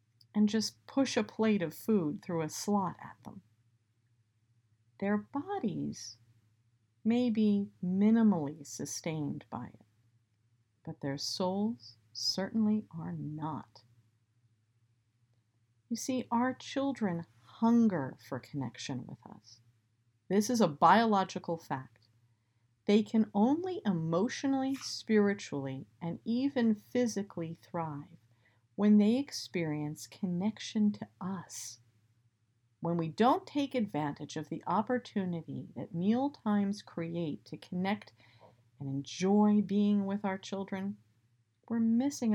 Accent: American